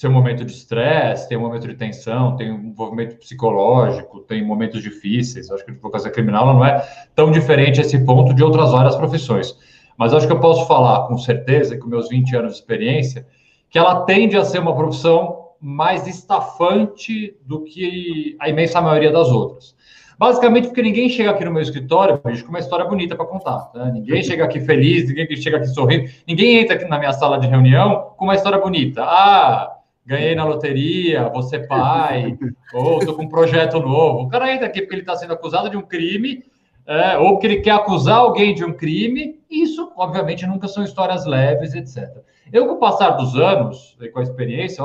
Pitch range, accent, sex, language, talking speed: 130-195 Hz, Brazilian, male, Portuguese, 200 wpm